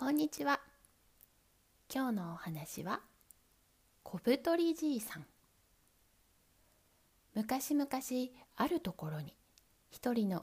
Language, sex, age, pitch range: Japanese, female, 20-39, 170-275 Hz